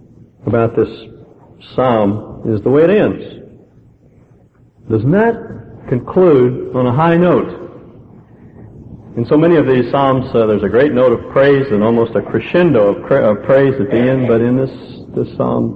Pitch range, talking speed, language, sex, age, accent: 110-150 Hz, 165 wpm, English, male, 50-69, American